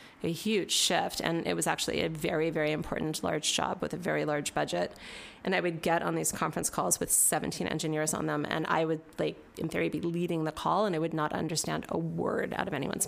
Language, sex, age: English, female, 30-49